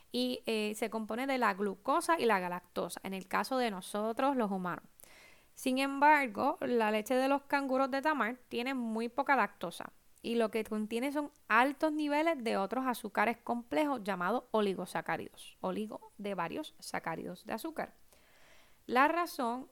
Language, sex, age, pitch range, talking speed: Spanish, female, 10-29, 205-270 Hz, 155 wpm